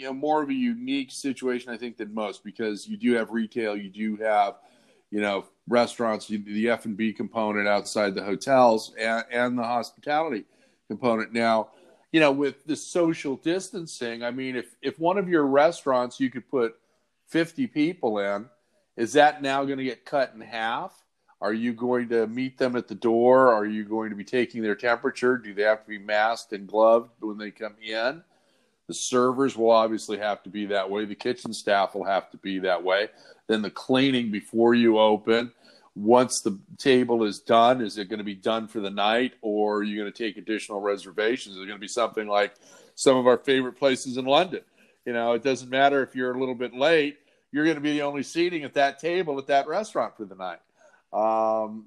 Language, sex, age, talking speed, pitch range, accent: English, male, 40-59, 210 wpm, 110-135 Hz, American